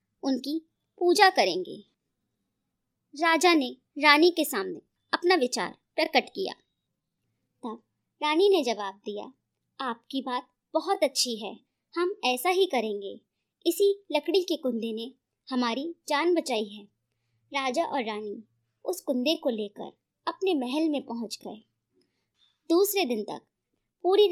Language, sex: Hindi, male